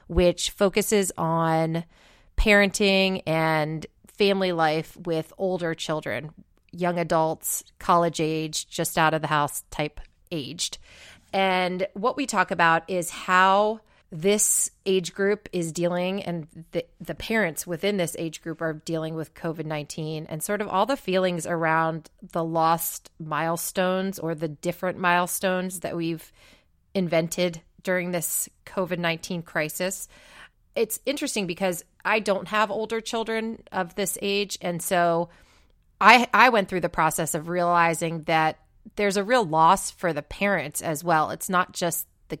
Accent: American